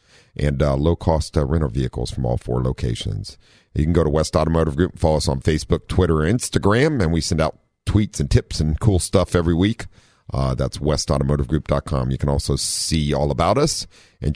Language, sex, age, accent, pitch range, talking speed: English, male, 50-69, American, 70-95 Hz, 200 wpm